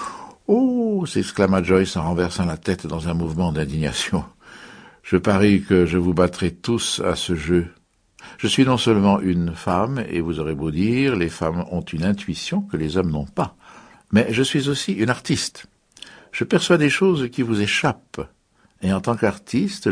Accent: French